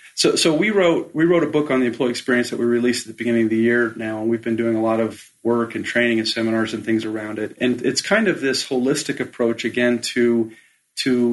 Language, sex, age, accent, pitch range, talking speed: English, male, 40-59, American, 115-135 Hz, 255 wpm